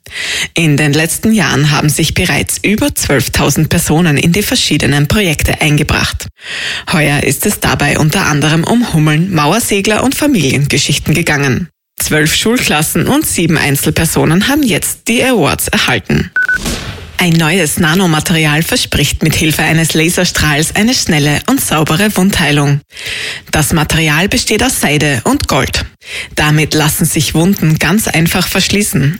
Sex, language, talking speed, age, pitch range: female, German, 130 wpm, 20-39, 150-185 Hz